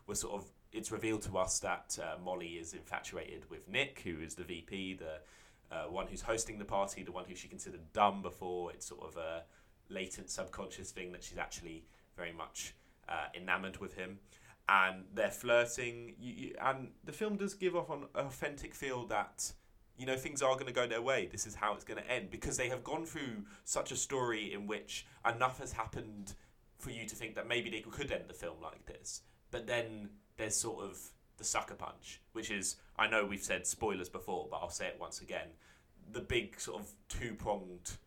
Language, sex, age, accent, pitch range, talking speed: English, male, 20-39, British, 90-120 Hz, 205 wpm